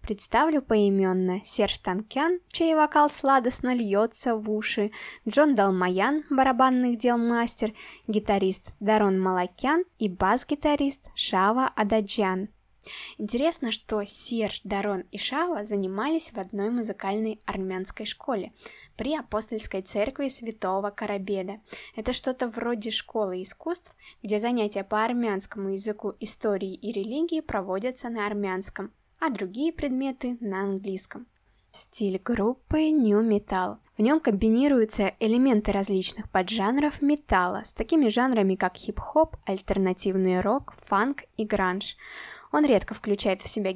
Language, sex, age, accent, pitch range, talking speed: Russian, female, 20-39, native, 200-255 Hz, 120 wpm